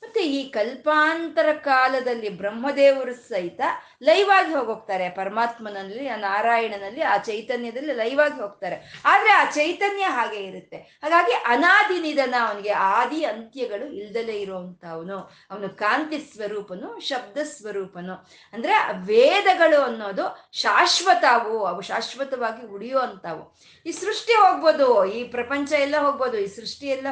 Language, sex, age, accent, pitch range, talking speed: Kannada, female, 20-39, native, 205-305 Hz, 105 wpm